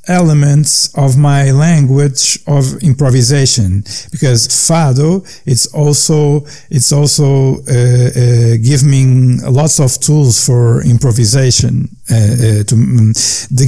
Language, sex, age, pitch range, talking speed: English, male, 50-69, 120-155 Hz, 115 wpm